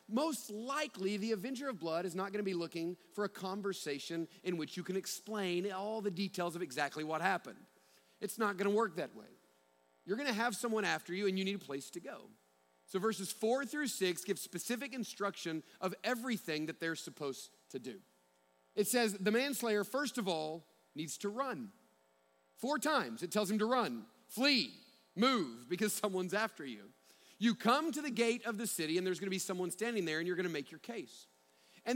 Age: 40-59